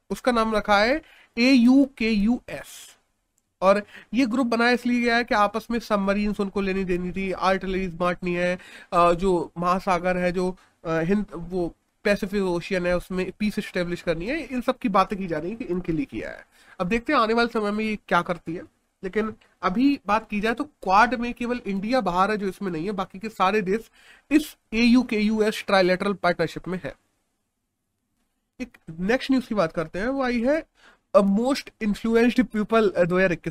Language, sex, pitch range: Hindi, male, 185-230 Hz